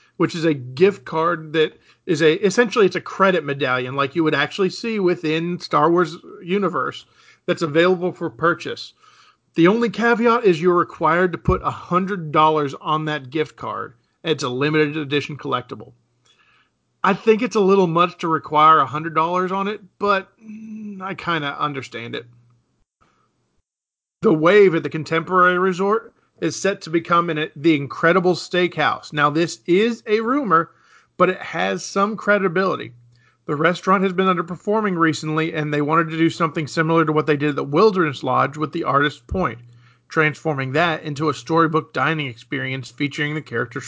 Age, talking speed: 40-59, 165 wpm